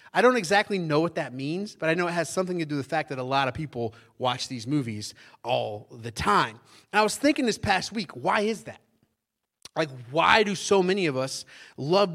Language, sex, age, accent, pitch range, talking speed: English, male, 30-49, American, 160-215 Hz, 230 wpm